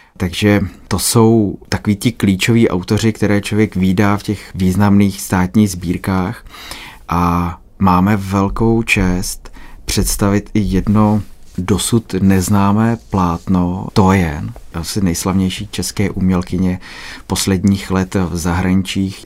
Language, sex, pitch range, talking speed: Czech, male, 90-105 Hz, 105 wpm